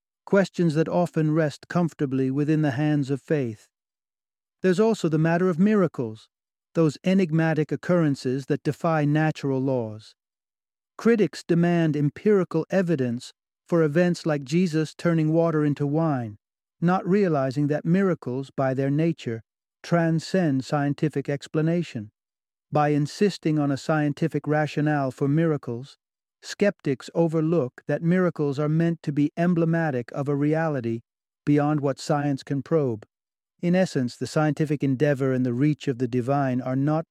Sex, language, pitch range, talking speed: male, English, 130-160 Hz, 135 wpm